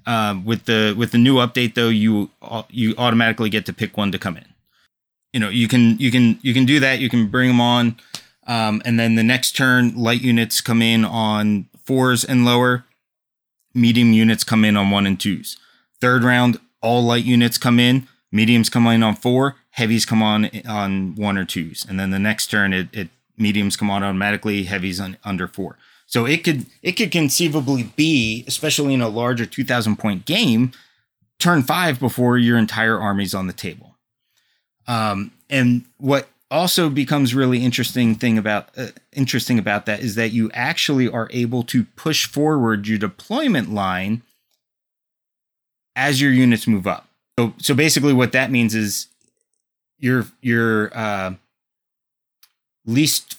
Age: 30-49